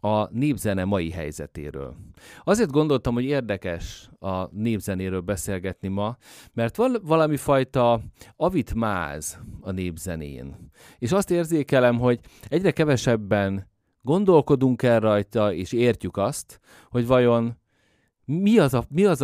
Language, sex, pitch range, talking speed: Hungarian, male, 95-130 Hz, 115 wpm